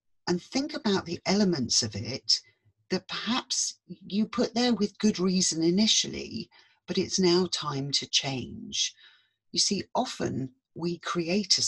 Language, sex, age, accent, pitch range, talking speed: English, female, 40-59, British, 130-185 Hz, 145 wpm